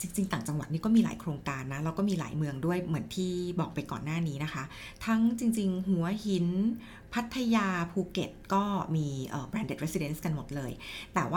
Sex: female